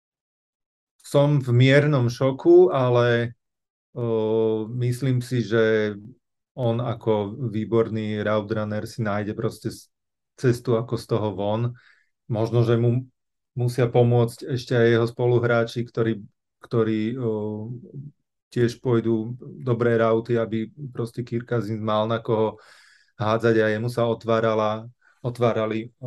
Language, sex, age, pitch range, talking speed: Slovak, male, 30-49, 110-125 Hz, 115 wpm